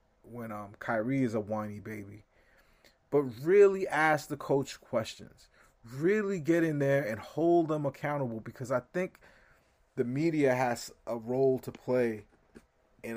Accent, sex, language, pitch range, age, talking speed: American, male, English, 120-150 Hz, 30-49, 145 wpm